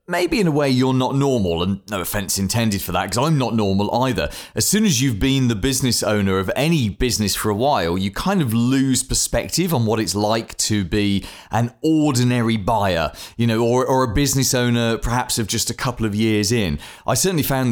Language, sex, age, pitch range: English, male, 30-49, 105-145 Hz